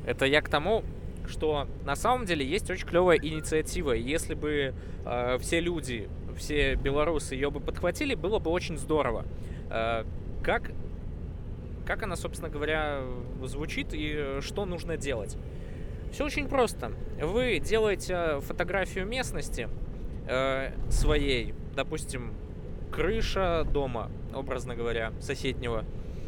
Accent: native